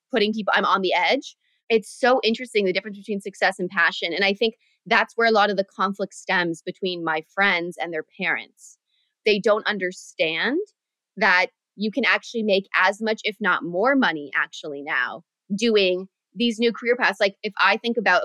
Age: 20-39